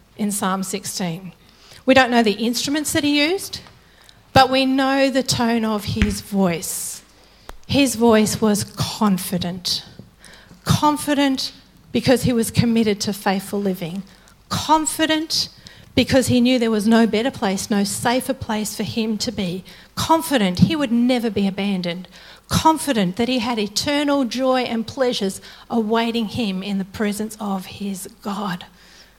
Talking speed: 140 wpm